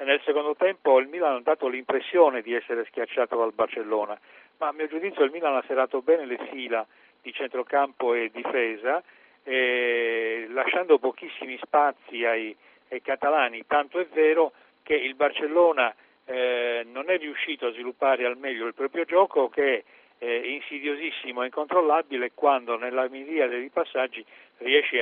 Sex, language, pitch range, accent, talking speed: male, Italian, 120-155 Hz, native, 150 wpm